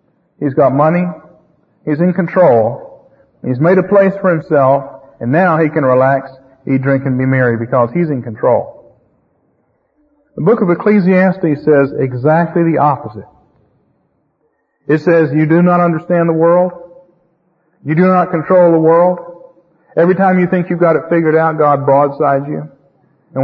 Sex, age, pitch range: male, 40-59, 135-180 Hz